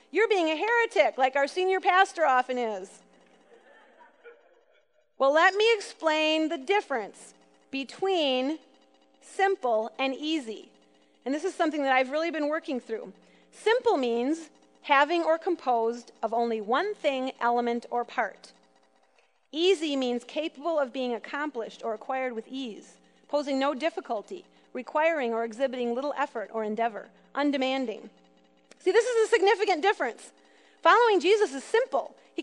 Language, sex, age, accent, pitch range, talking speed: English, female, 40-59, American, 240-365 Hz, 135 wpm